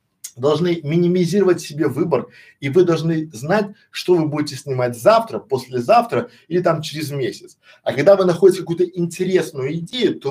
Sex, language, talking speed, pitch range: male, Russian, 150 wpm, 150-205 Hz